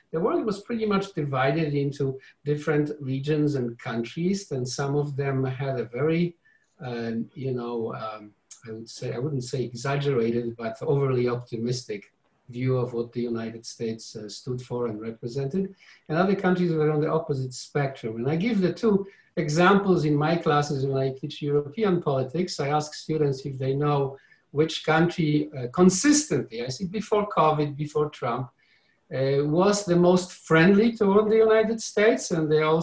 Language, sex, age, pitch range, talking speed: English, male, 50-69, 130-170 Hz, 170 wpm